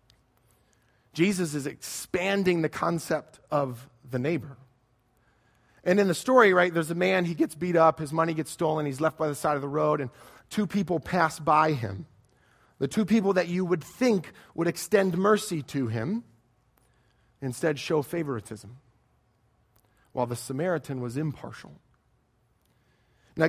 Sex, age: male, 40-59